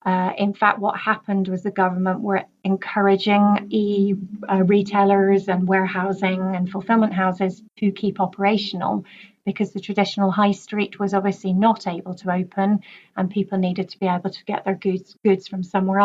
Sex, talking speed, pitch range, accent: female, 170 wpm, 185-205 Hz, British